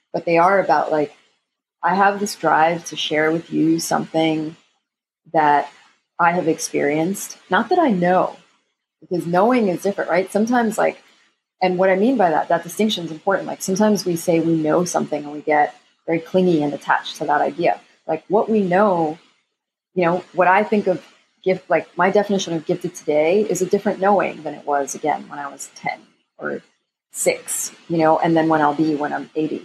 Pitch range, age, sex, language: 160-190 Hz, 30-49, female, English